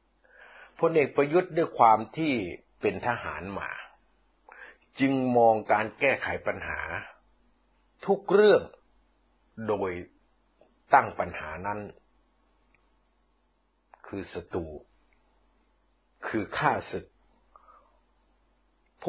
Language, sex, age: Thai, male, 60-79